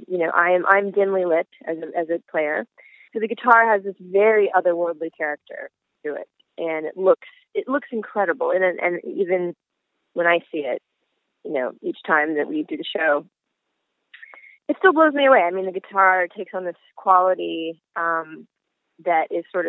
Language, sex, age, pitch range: English, female, 20-39, 170-225 Hz